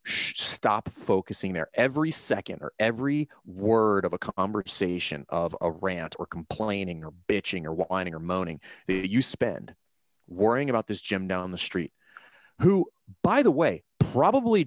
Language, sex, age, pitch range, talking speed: English, male, 30-49, 90-115 Hz, 150 wpm